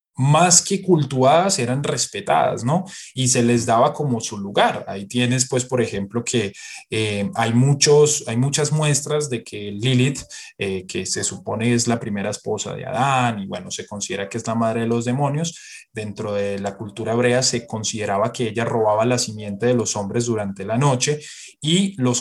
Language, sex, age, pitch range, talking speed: Spanish, male, 20-39, 115-150 Hz, 185 wpm